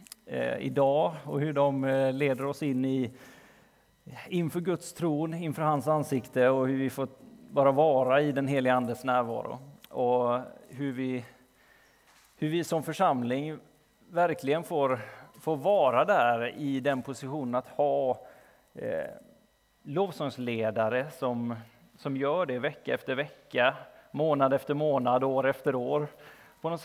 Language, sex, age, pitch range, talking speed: Swedish, male, 30-49, 125-145 Hz, 130 wpm